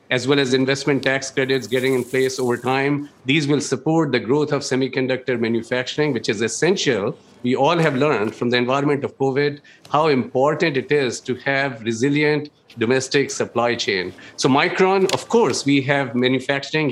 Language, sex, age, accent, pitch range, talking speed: English, male, 50-69, Indian, 125-150 Hz, 170 wpm